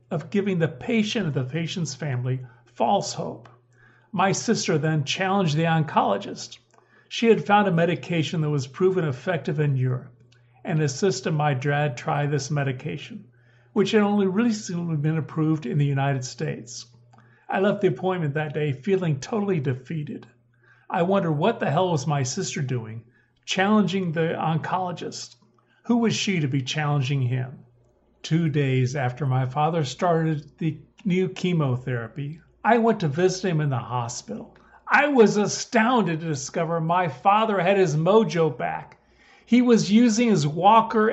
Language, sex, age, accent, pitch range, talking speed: English, male, 50-69, American, 135-195 Hz, 155 wpm